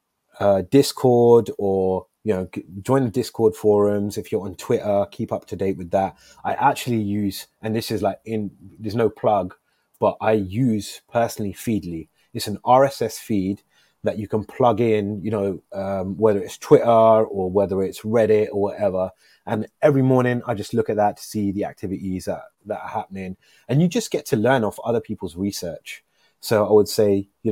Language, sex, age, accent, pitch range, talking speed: English, male, 30-49, British, 100-115 Hz, 190 wpm